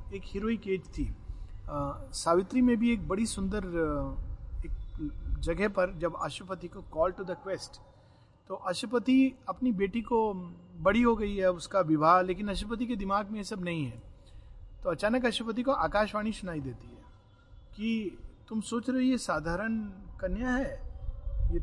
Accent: native